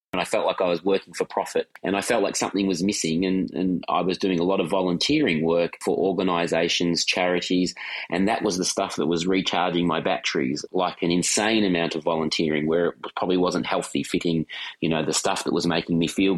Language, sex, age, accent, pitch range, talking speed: English, male, 30-49, Australian, 85-95 Hz, 220 wpm